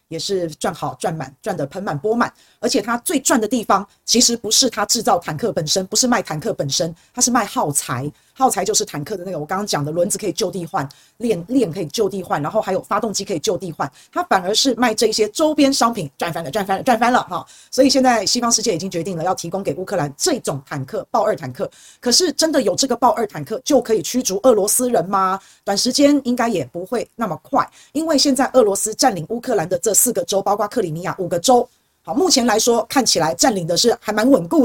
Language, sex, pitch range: Chinese, female, 185-250 Hz